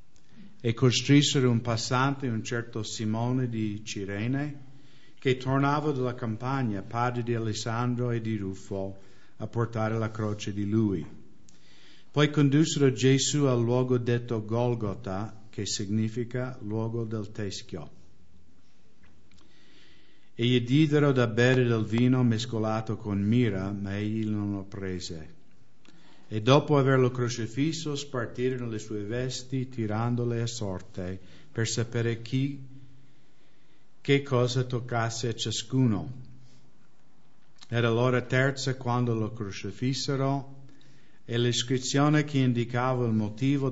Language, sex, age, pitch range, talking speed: English, male, 50-69, 110-130 Hz, 115 wpm